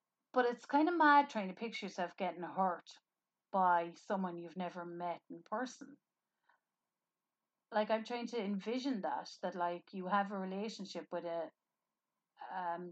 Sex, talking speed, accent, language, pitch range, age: female, 155 wpm, Irish, English, 175-225 Hz, 30-49